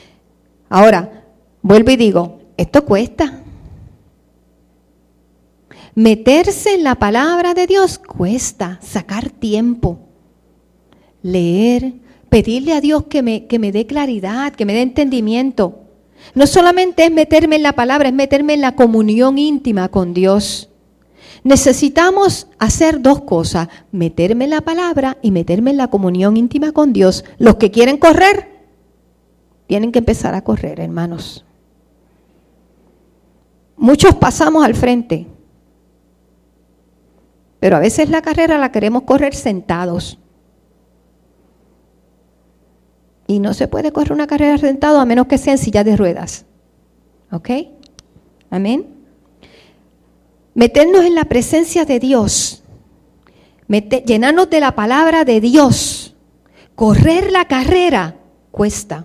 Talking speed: 120 wpm